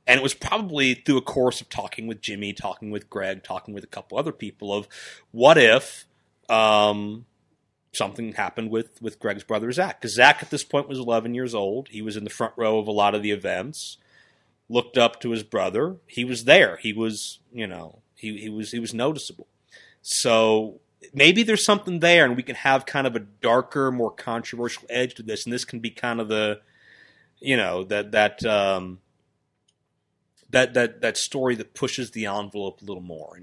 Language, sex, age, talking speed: English, male, 30-49, 200 wpm